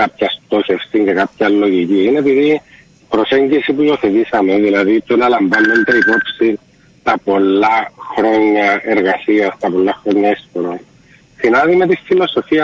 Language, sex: Greek, male